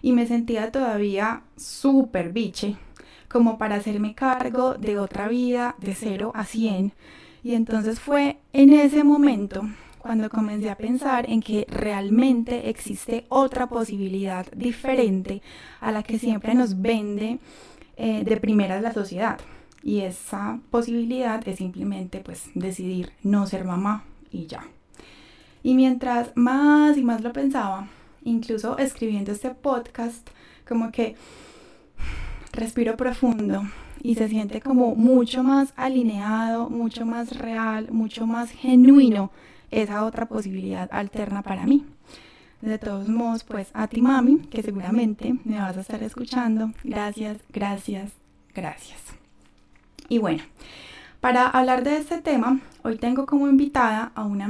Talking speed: 135 wpm